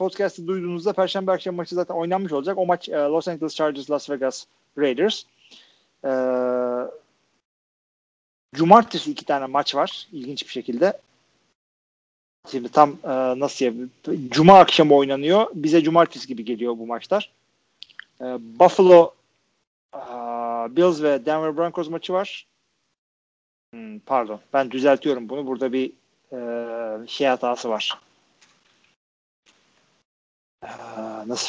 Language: Turkish